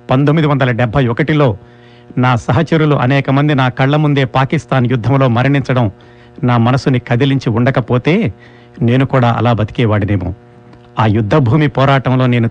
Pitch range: 120-135 Hz